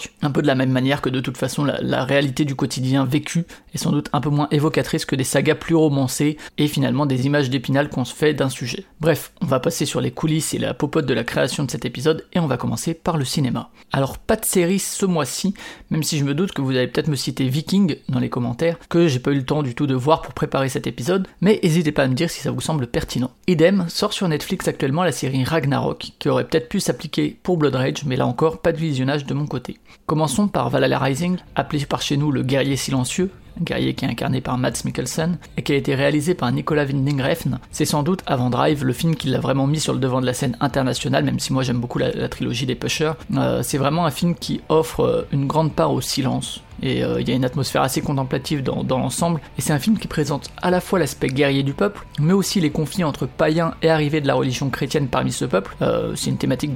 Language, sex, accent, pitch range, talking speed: French, male, French, 135-165 Hz, 260 wpm